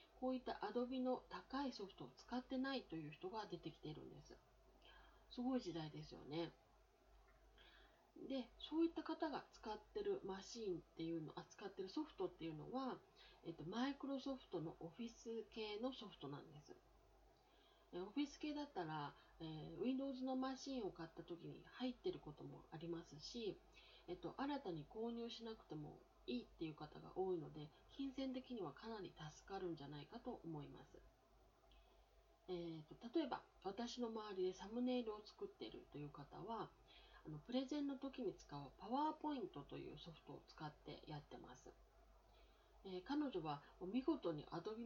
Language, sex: Japanese, female